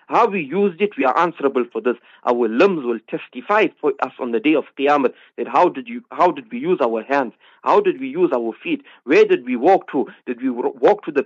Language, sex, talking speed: English, male, 245 wpm